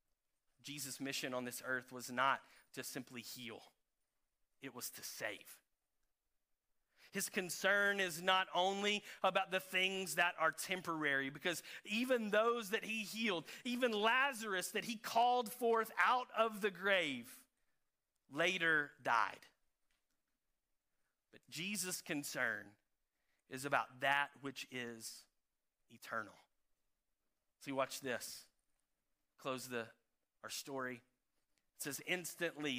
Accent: American